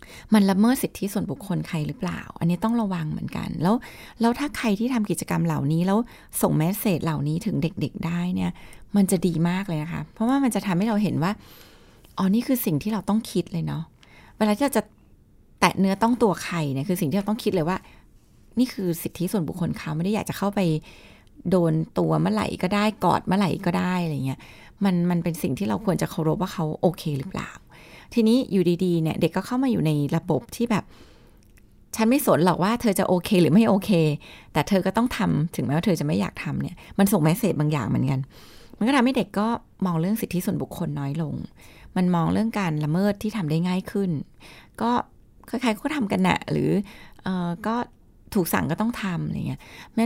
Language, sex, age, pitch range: Thai, female, 20-39, 165-215 Hz